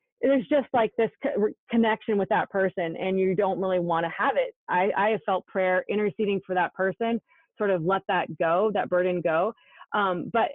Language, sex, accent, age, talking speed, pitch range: English, female, American, 30-49, 200 wpm, 190-240 Hz